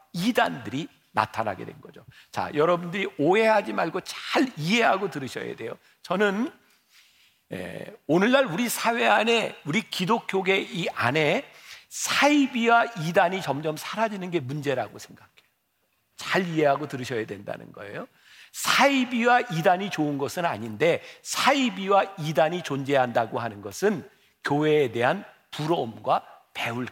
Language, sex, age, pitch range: Korean, male, 50-69, 150-220 Hz